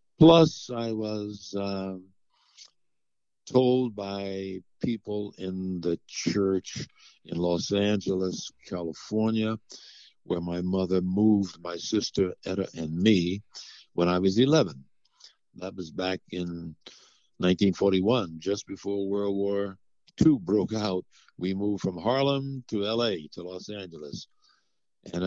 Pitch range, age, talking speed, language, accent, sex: 90-110 Hz, 60-79, 115 wpm, English, American, male